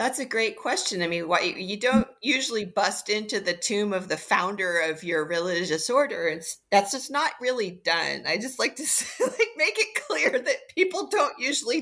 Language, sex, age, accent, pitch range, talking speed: English, female, 40-59, American, 180-250 Hz, 200 wpm